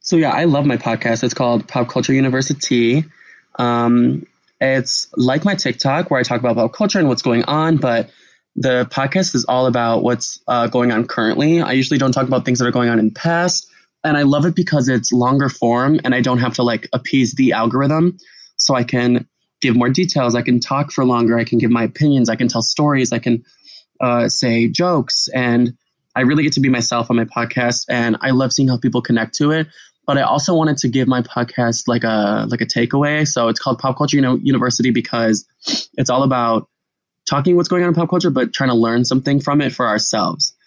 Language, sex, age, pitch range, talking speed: English, male, 20-39, 120-140 Hz, 220 wpm